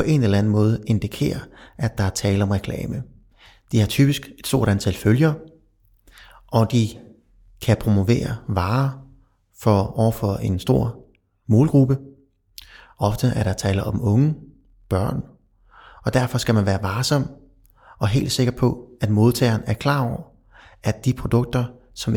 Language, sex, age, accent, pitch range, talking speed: Danish, male, 30-49, native, 100-125 Hz, 150 wpm